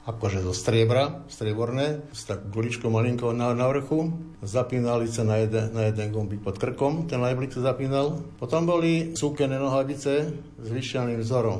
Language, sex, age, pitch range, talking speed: Slovak, male, 60-79, 110-135 Hz, 150 wpm